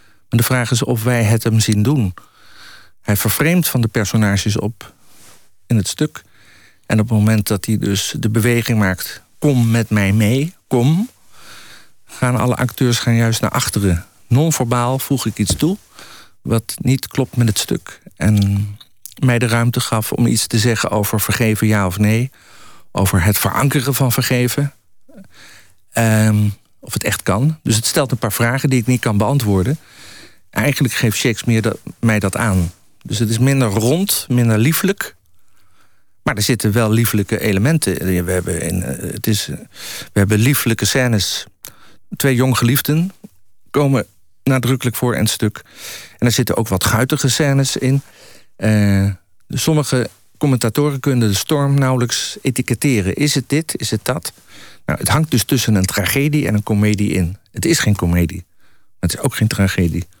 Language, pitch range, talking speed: Dutch, 100-130 Hz, 160 wpm